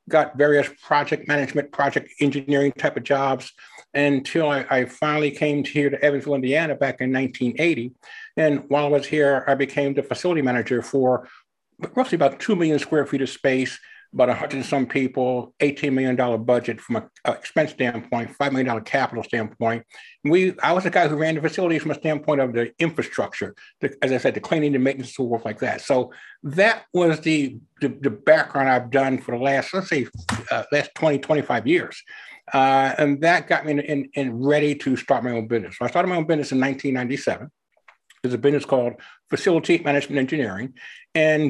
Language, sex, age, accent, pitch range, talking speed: English, male, 60-79, American, 125-155 Hz, 195 wpm